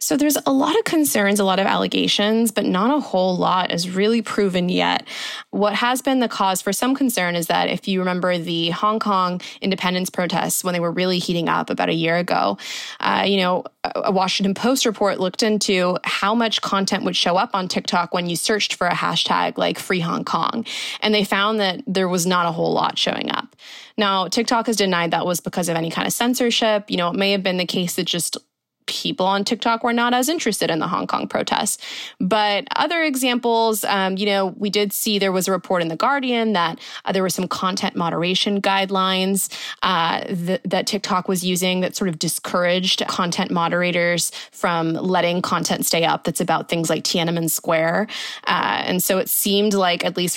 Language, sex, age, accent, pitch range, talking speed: English, female, 20-39, American, 180-215 Hz, 210 wpm